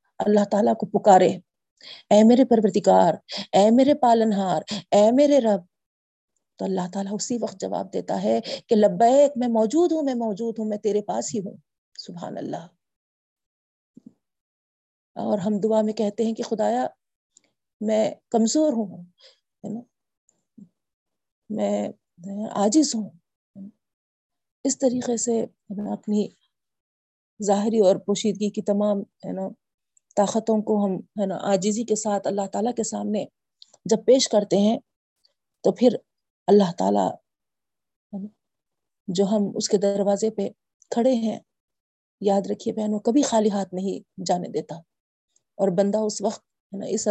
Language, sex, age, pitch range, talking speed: Urdu, female, 40-59, 205-235 Hz, 125 wpm